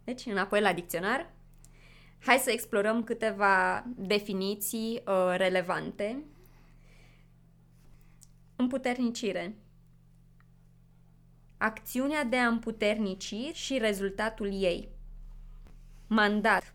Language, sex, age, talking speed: Romanian, female, 20-39, 70 wpm